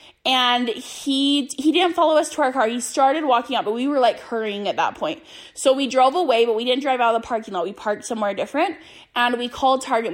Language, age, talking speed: English, 10-29, 250 wpm